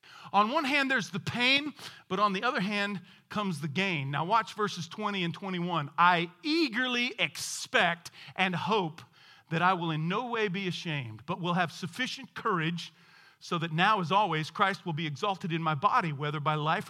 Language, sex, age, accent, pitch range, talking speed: English, male, 40-59, American, 155-210 Hz, 190 wpm